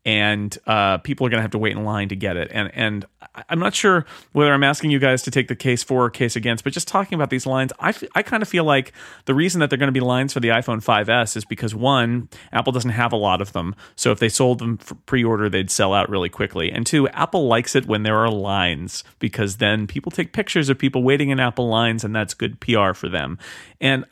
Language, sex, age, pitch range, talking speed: English, male, 30-49, 105-130 Hz, 260 wpm